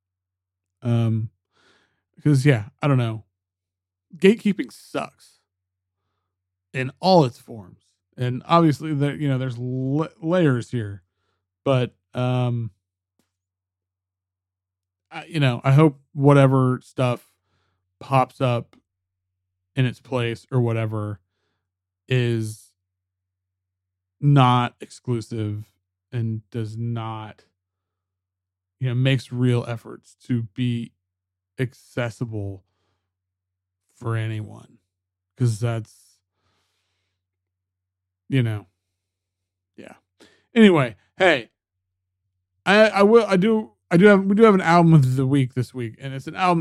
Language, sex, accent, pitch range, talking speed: English, male, American, 95-130 Hz, 105 wpm